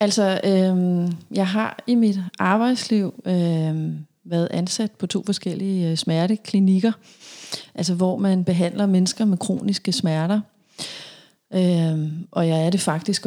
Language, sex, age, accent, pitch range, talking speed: Danish, female, 30-49, native, 170-205 Hz, 115 wpm